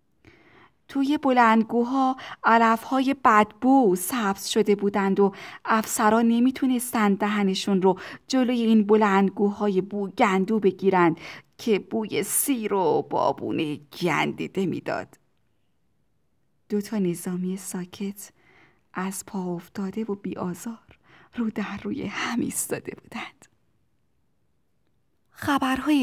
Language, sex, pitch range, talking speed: Persian, female, 190-230 Hz, 90 wpm